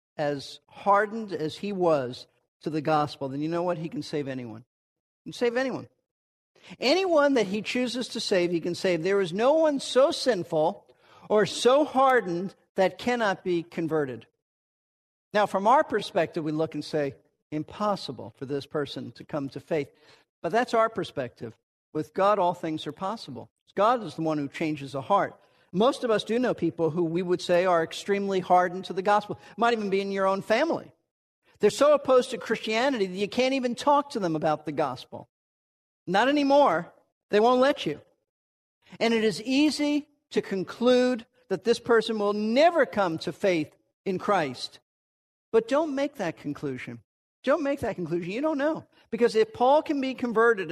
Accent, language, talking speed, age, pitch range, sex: American, English, 180 wpm, 50-69, 155-240 Hz, male